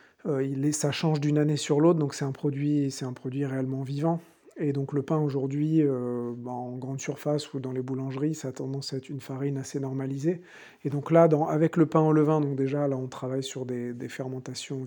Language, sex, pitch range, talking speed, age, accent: English, male, 135-155 Hz, 240 wpm, 40-59, French